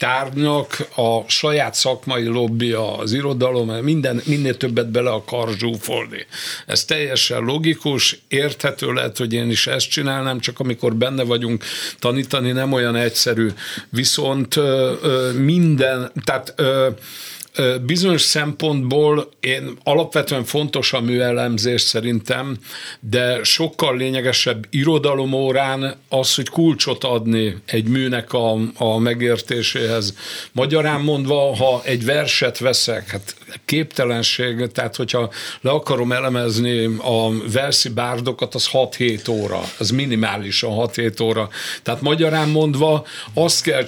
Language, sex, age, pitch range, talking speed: Hungarian, male, 60-79, 120-140 Hz, 120 wpm